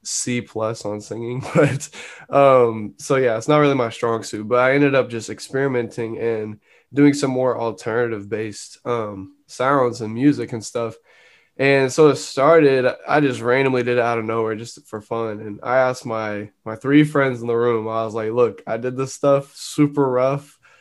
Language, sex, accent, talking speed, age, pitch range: English, male, American, 195 wpm, 10-29, 110-135 Hz